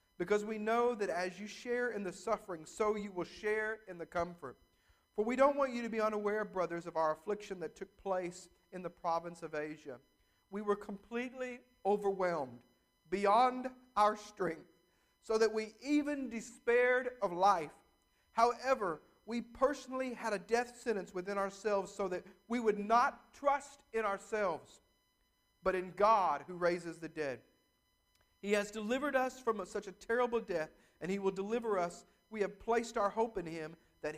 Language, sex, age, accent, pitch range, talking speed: English, male, 50-69, American, 160-220 Hz, 170 wpm